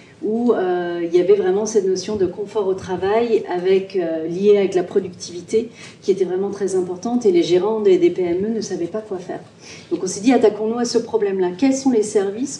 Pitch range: 190-250 Hz